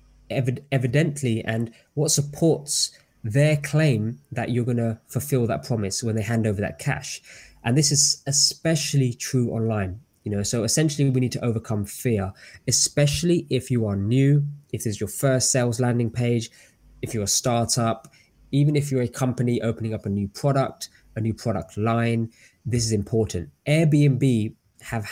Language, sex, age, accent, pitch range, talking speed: English, male, 20-39, British, 110-140 Hz, 165 wpm